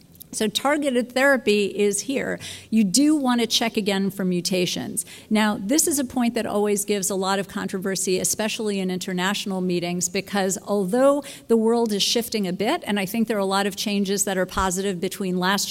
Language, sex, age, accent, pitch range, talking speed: English, female, 50-69, American, 190-230 Hz, 195 wpm